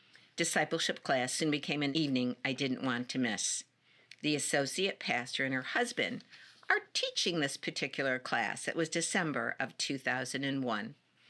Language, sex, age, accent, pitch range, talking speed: English, female, 50-69, American, 125-150 Hz, 145 wpm